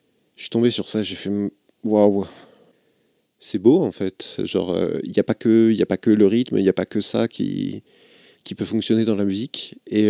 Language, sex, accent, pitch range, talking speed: French, male, French, 100-110 Hz, 230 wpm